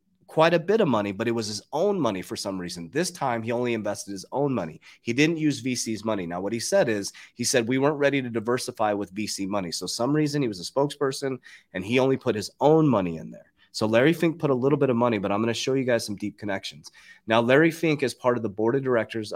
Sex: male